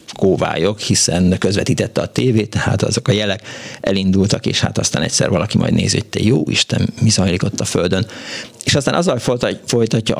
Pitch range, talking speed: 95-120 Hz, 160 wpm